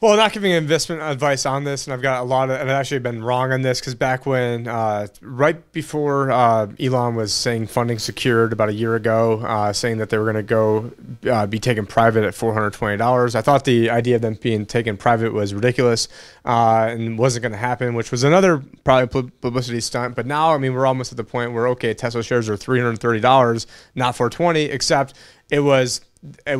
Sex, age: male, 30-49